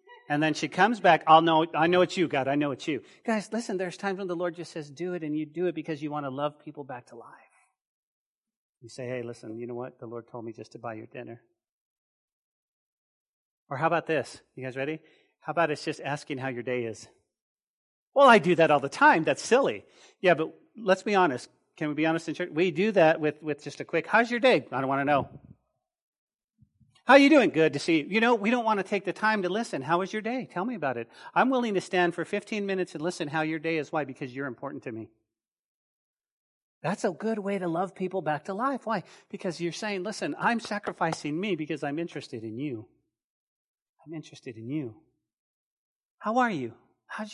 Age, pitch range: 40-59, 145-205 Hz